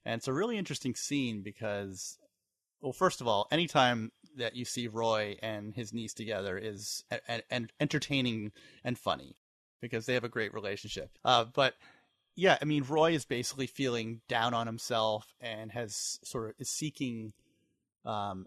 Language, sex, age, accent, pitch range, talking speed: English, male, 30-49, American, 110-130 Hz, 170 wpm